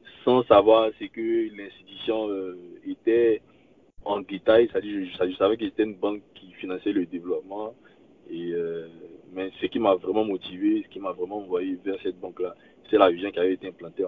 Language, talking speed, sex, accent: French, 190 wpm, male, French